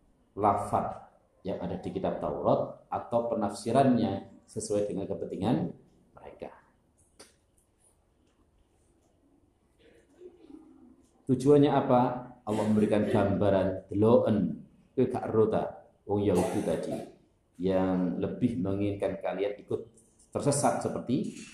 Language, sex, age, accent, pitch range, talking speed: Indonesian, male, 50-69, native, 90-120 Hz, 80 wpm